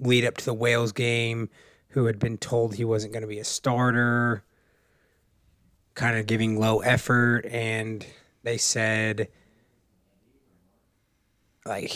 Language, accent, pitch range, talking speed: English, American, 105-120 Hz, 130 wpm